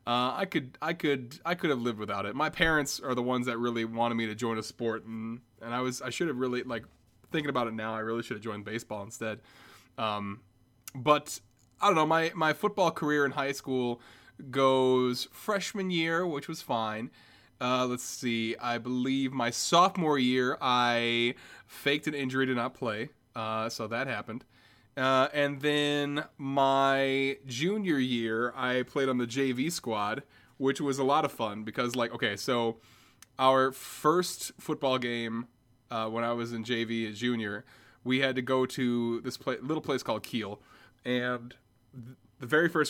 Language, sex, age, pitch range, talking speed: English, male, 30-49, 115-140 Hz, 180 wpm